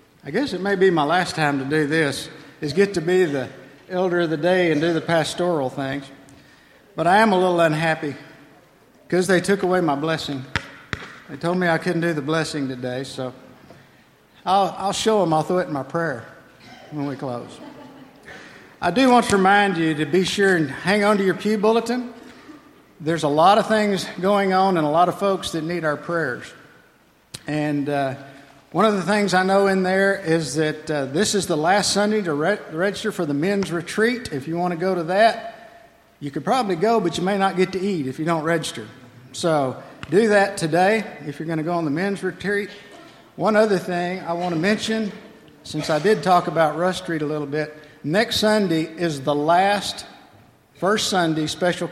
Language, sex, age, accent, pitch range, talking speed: English, male, 60-79, American, 150-195 Hz, 205 wpm